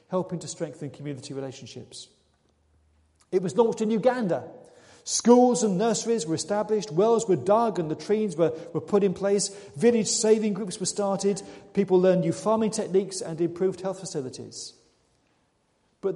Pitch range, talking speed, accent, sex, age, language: 155-200 Hz, 150 wpm, British, male, 40-59, English